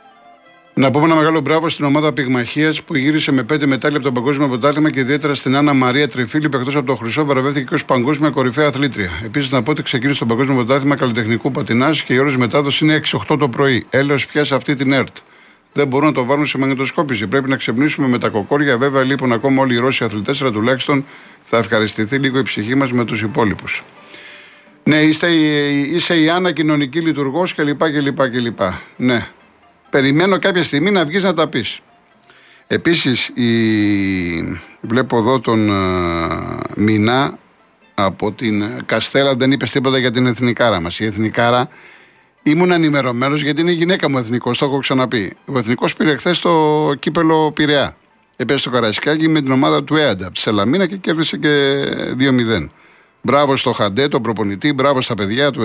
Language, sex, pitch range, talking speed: Greek, male, 120-150 Hz, 180 wpm